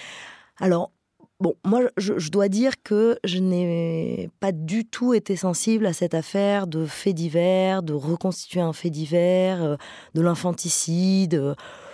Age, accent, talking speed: 20-39, French, 145 wpm